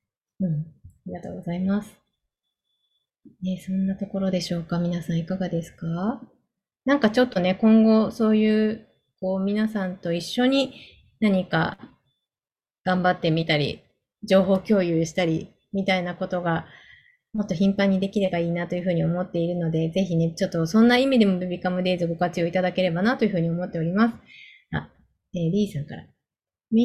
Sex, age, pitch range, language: female, 20-39, 175-220 Hz, Japanese